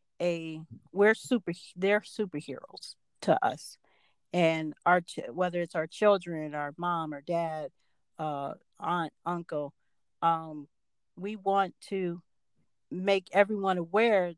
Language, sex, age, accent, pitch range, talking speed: English, female, 40-59, American, 170-195 Hz, 115 wpm